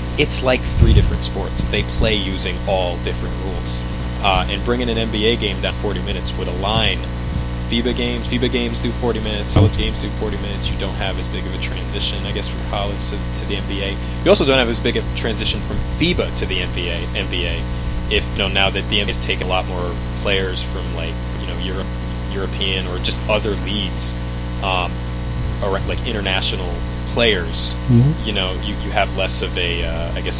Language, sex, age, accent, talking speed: English, male, 20-39, American, 200 wpm